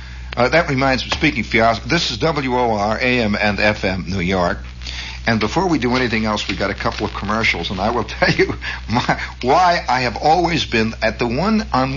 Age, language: 60-79, English